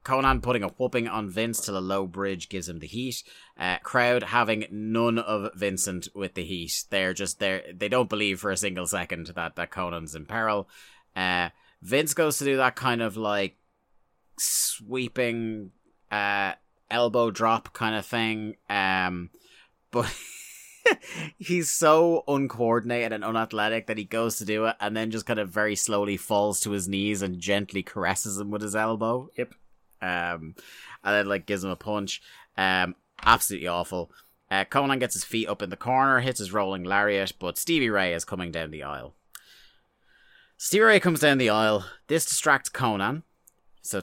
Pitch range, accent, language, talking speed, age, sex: 95-125 Hz, British, English, 175 wpm, 30-49, male